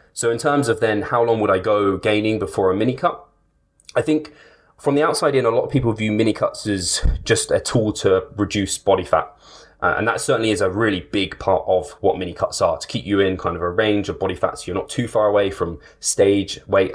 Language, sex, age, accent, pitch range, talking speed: English, male, 20-39, British, 95-115 Hz, 245 wpm